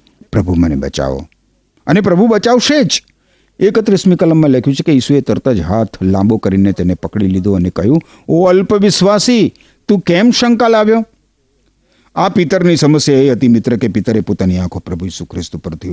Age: 50-69